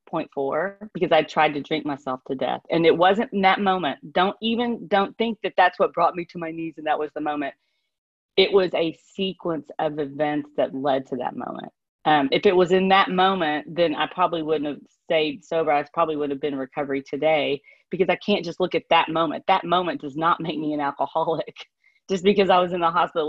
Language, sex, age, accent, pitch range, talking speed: English, female, 40-59, American, 150-190 Hz, 230 wpm